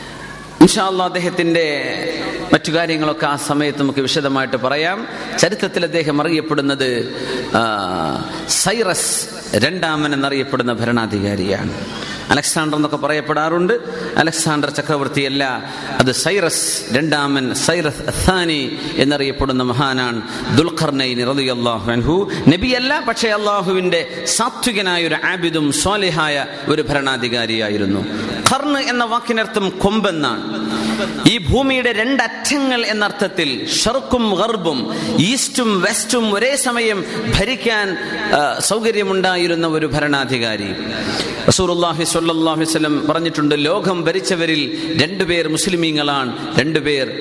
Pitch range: 135-195 Hz